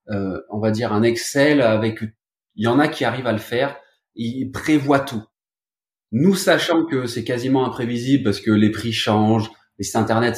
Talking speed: 190 wpm